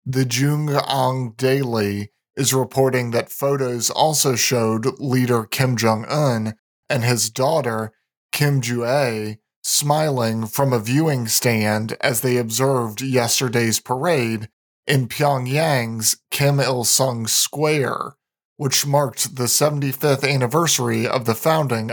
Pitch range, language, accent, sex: 120-145 Hz, English, American, male